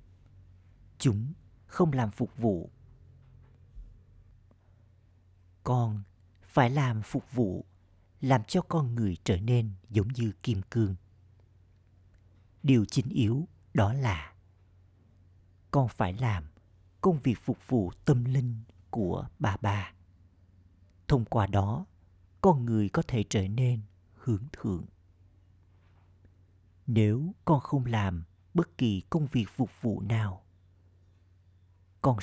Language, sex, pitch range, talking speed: Vietnamese, male, 95-120 Hz, 110 wpm